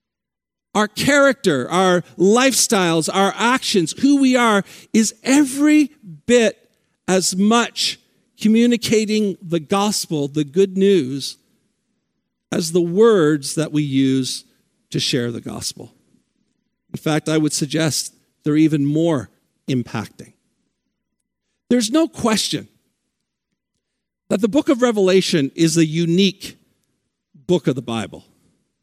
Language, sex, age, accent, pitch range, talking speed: English, male, 50-69, American, 170-240 Hz, 110 wpm